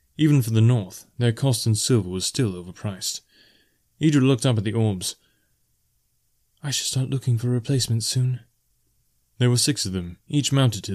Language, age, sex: English, 30-49, male